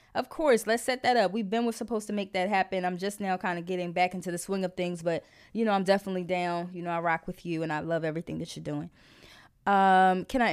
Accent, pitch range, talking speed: American, 180-230 Hz, 275 wpm